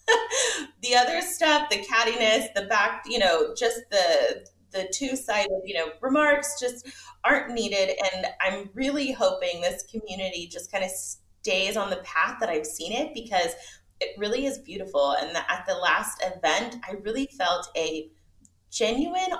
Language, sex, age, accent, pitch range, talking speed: English, female, 30-49, American, 185-270 Hz, 160 wpm